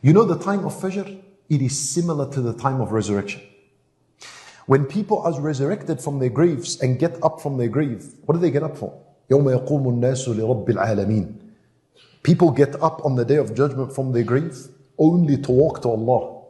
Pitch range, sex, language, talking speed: 135-175 Hz, male, English, 180 wpm